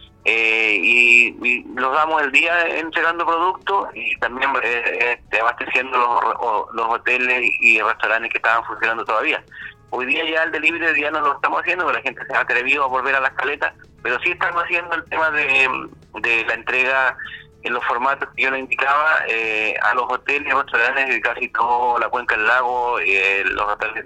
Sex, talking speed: male, 185 wpm